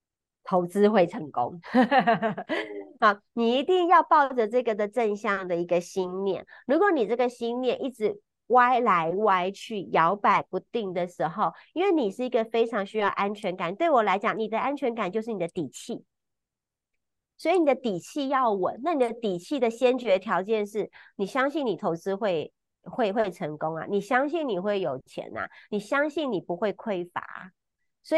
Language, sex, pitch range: Chinese, female, 175-245 Hz